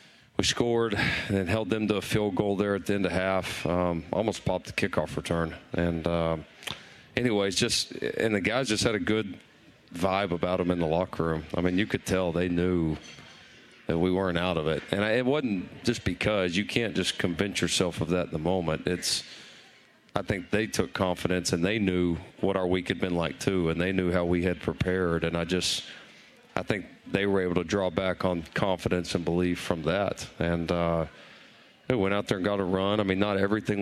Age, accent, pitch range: 40-59, American, 85-100 Hz